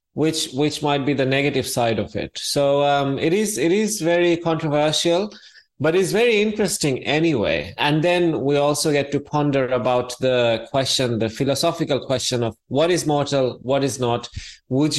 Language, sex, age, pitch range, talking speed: English, male, 20-39, 125-155 Hz, 170 wpm